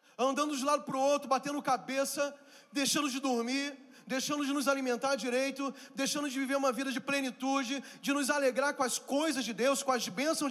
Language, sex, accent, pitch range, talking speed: Portuguese, male, Brazilian, 225-290 Hz, 195 wpm